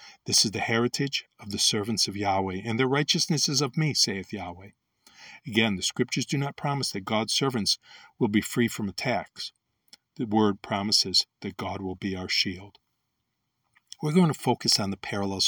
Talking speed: 180 wpm